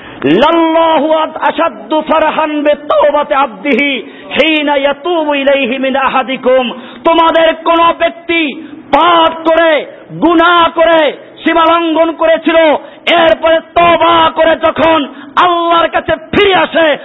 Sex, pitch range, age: male, 230-325 Hz, 50-69